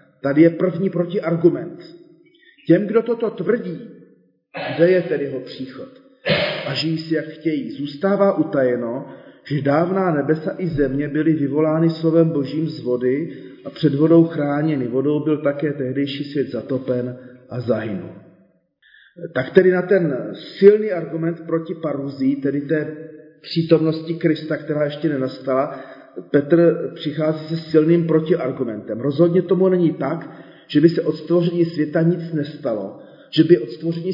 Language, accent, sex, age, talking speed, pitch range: Czech, native, male, 40-59, 135 wpm, 140-165 Hz